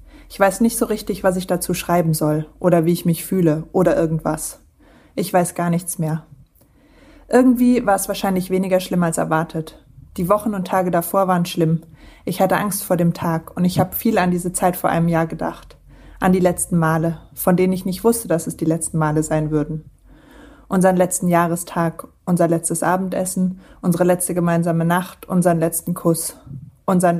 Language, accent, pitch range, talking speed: German, German, 165-190 Hz, 185 wpm